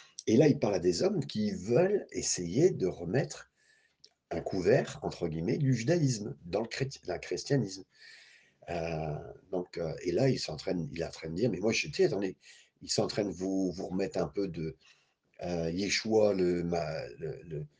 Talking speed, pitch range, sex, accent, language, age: 180 wpm, 85-140 Hz, male, French, French, 50-69